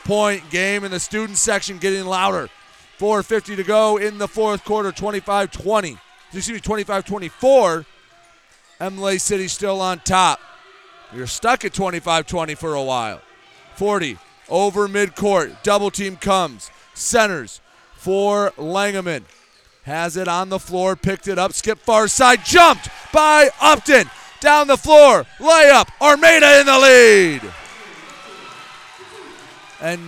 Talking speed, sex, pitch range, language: 125 wpm, male, 175-235 Hz, English